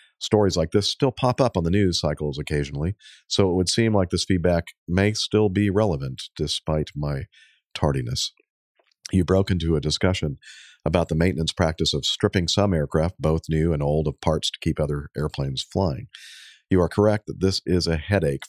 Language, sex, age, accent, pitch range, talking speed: English, male, 50-69, American, 75-95 Hz, 185 wpm